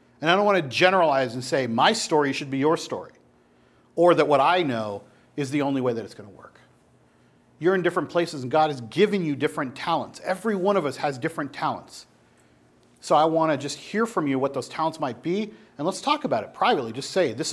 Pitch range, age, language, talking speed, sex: 120-165 Hz, 40-59, English, 235 wpm, male